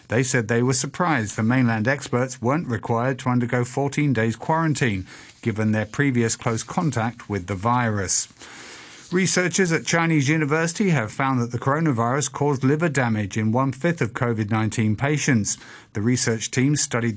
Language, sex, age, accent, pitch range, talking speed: English, male, 50-69, British, 125-180 Hz, 155 wpm